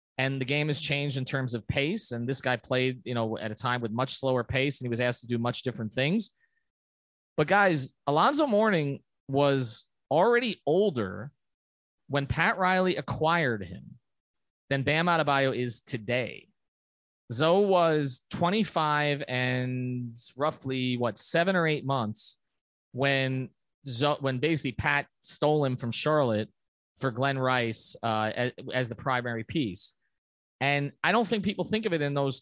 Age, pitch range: 30-49, 120-155 Hz